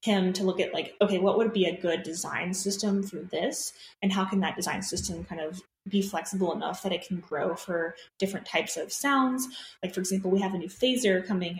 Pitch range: 175-200 Hz